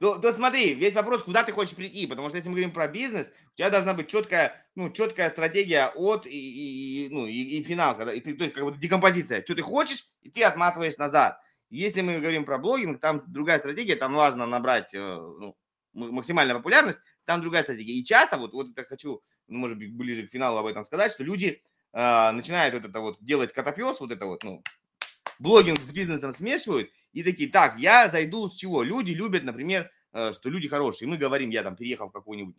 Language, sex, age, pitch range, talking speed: Russian, male, 20-39, 125-195 Hz, 215 wpm